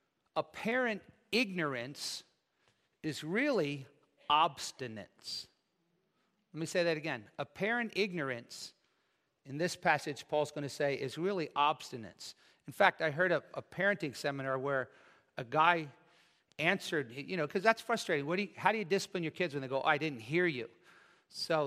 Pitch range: 135-175 Hz